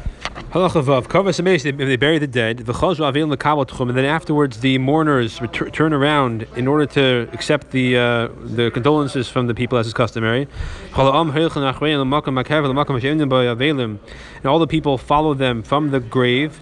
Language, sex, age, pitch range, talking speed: English, male, 20-39, 125-150 Hz, 130 wpm